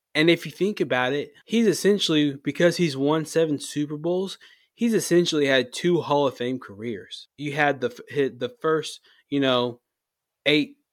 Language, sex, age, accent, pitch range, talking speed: English, male, 20-39, American, 125-145 Hz, 165 wpm